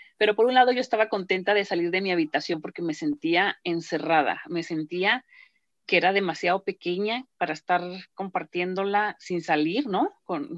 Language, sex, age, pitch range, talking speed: English, female, 40-59, 165-205 Hz, 165 wpm